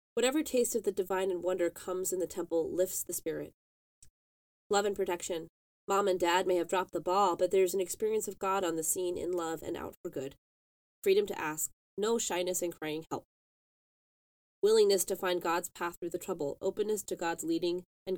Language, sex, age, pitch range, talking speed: English, female, 20-39, 175-220 Hz, 205 wpm